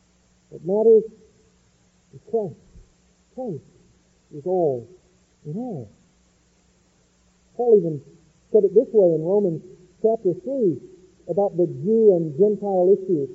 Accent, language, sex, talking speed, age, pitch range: American, English, male, 110 wpm, 50-69, 195-295 Hz